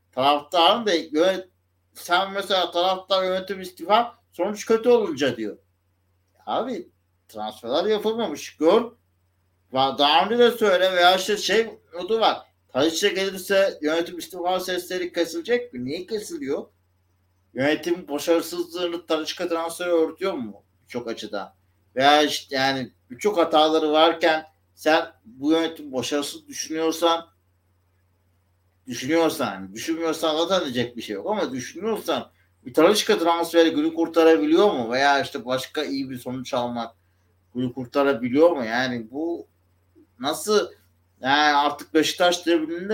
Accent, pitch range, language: native, 110-175 Hz, Turkish